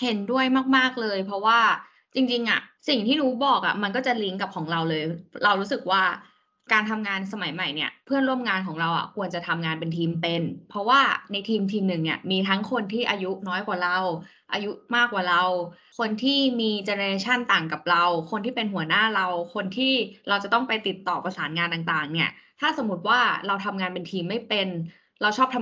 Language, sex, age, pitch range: Thai, female, 20-39, 180-230 Hz